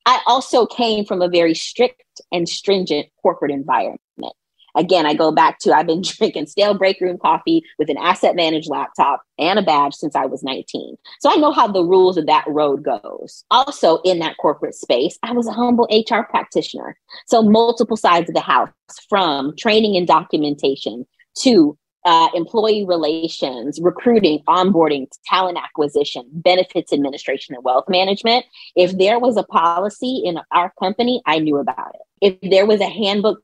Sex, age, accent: female, 30-49, American